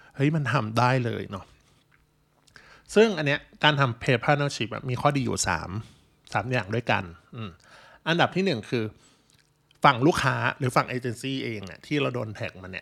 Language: Thai